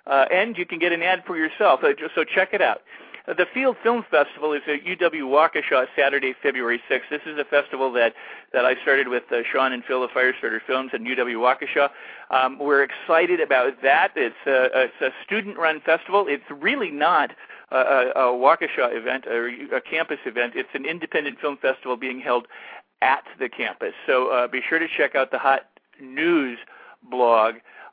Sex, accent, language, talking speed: male, American, English, 175 wpm